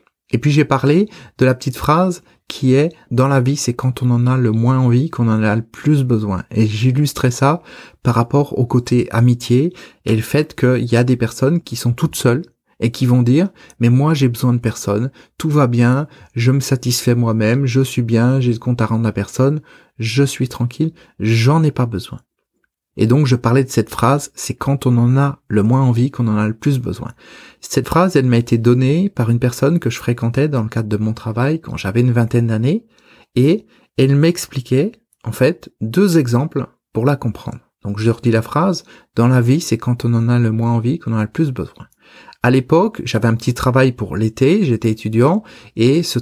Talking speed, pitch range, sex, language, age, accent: 225 wpm, 115-145 Hz, male, French, 30-49, French